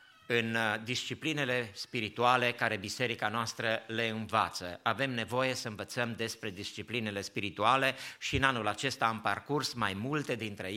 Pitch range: 115-140 Hz